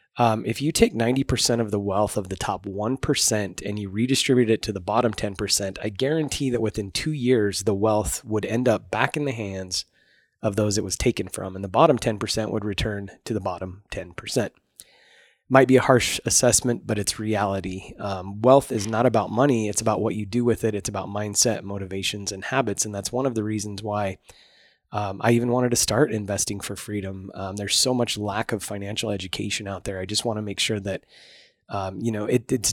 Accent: American